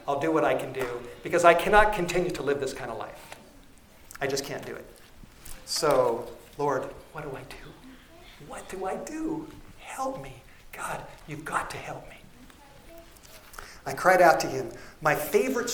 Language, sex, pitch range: English, male, 140-180 Hz